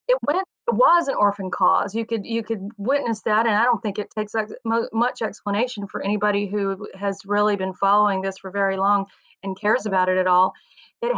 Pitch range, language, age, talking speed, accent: 200-230 Hz, English, 30-49, 205 wpm, American